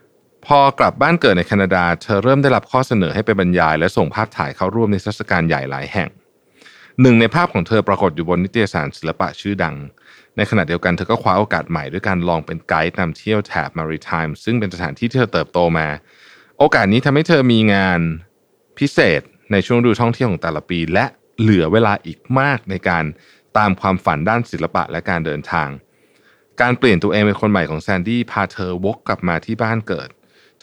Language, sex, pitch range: Thai, male, 85-115 Hz